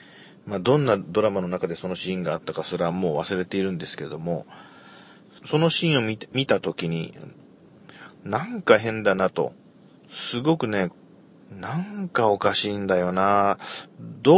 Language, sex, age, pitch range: Japanese, male, 40-59, 90-110 Hz